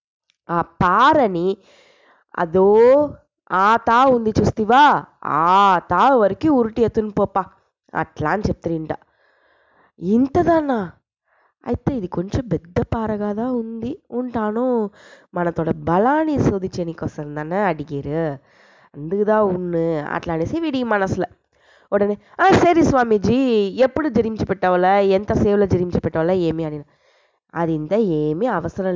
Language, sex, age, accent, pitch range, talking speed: English, female, 20-39, Indian, 170-255 Hz, 125 wpm